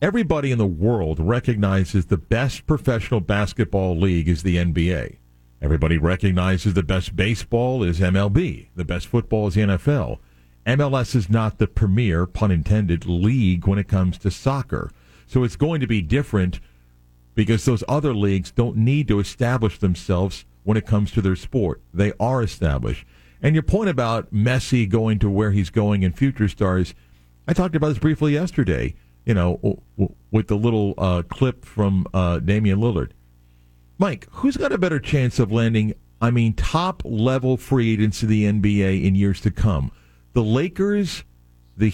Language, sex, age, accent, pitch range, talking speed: English, male, 50-69, American, 90-130 Hz, 165 wpm